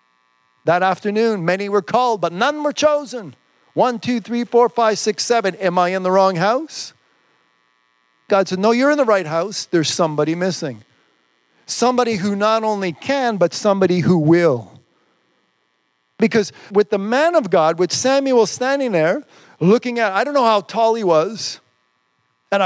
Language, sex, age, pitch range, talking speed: English, male, 50-69, 150-215 Hz, 165 wpm